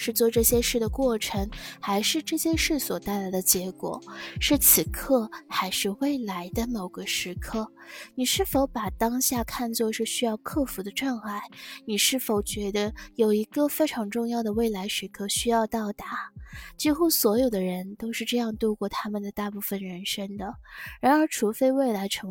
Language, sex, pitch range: Chinese, female, 200-265 Hz